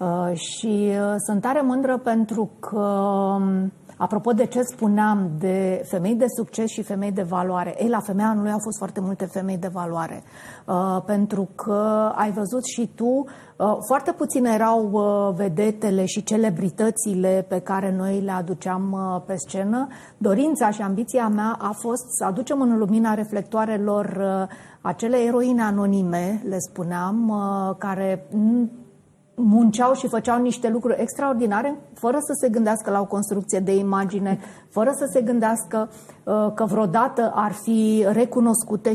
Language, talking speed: Romanian, 155 wpm